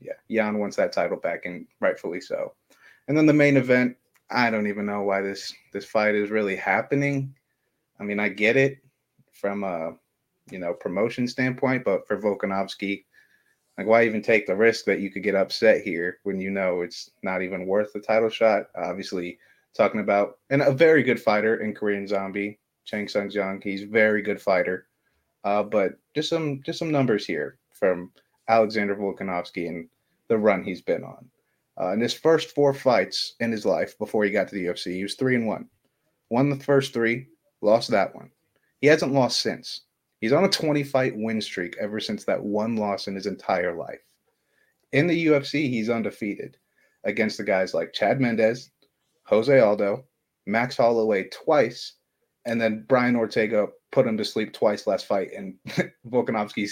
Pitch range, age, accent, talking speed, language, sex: 100-135 Hz, 30-49, American, 180 wpm, English, male